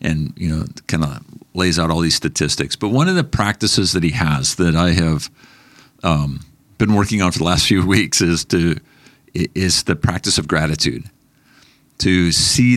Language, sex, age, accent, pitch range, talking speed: English, male, 50-69, American, 80-110 Hz, 185 wpm